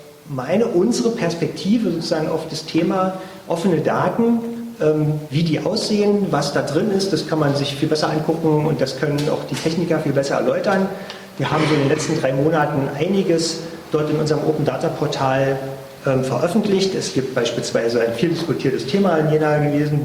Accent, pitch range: German, 130-160 Hz